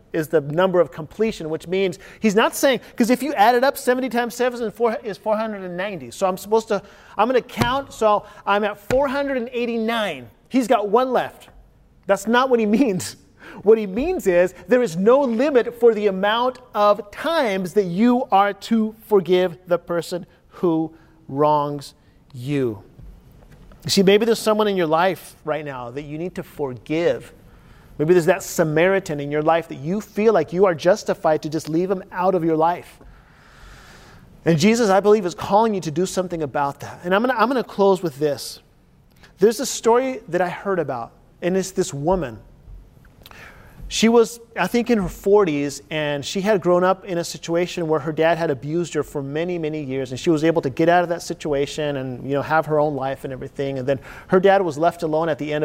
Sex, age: male, 40-59